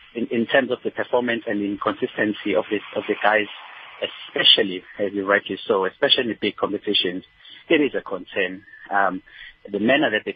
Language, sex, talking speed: English, male, 185 wpm